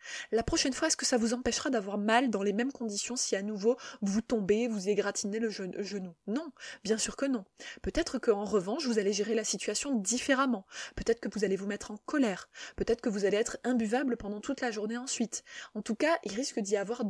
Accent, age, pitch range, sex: French, 20-39, 210-265 Hz, female